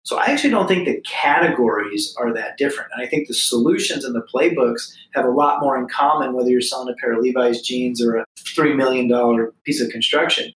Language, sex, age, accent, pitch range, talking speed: English, male, 30-49, American, 125-150 Hz, 220 wpm